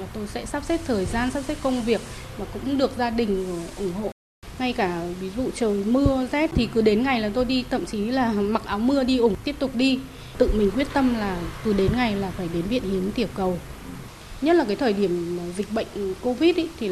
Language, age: Vietnamese, 20-39